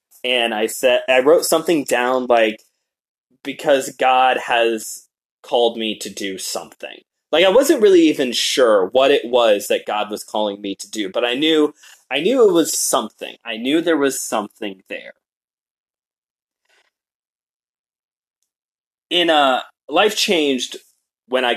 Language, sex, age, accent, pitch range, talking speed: English, male, 20-39, American, 110-160 Hz, 145 wpm